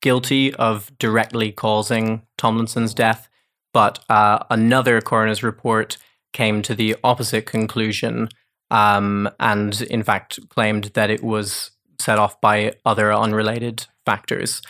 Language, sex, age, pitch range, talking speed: English, male, 20-39, 110-120 Hz, 125 wpm